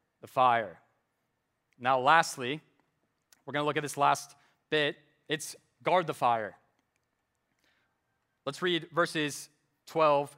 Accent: American